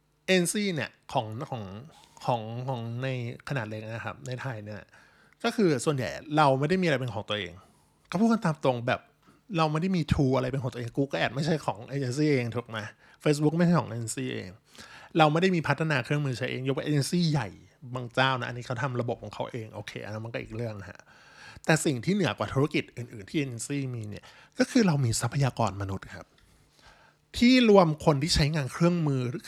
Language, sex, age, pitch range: Thai, male, 20-39, 120-155 Hz